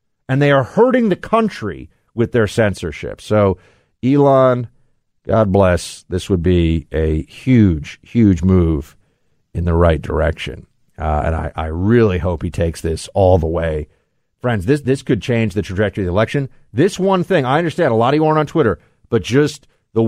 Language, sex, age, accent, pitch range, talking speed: English, male, 50-69, American, 95-140 Hz, 185 wpm